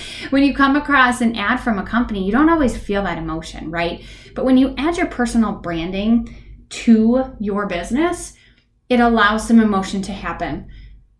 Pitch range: 185-245 Hz